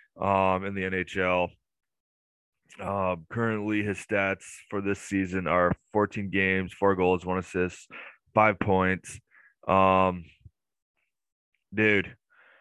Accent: American